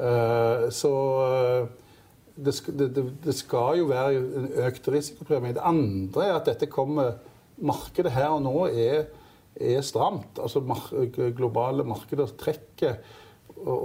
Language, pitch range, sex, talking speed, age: English, 110-135 Hz, male, 140 wpm, 50-69